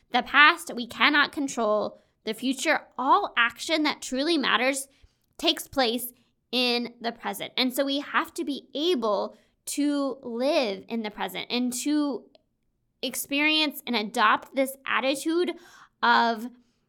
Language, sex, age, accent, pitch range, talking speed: English, female, 20-39, American, 230-290 Hz, 130 wpm